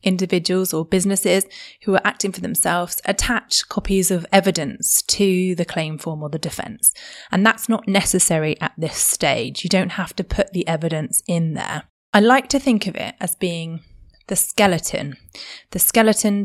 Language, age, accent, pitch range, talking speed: English, 20-39, British, 165-200 Hz, 170 wpm